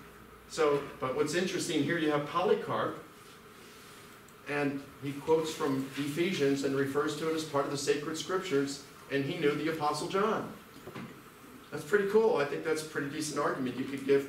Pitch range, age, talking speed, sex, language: 120-155 Hz, 40-59, 175 wpm, male, Danish